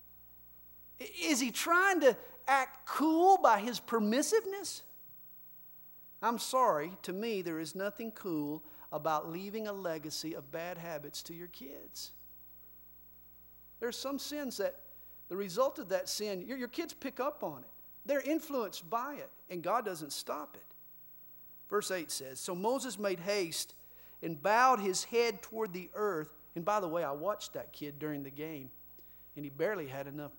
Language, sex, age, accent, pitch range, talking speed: English, male, 50-69, American, 145-235 Hz, 160 wpm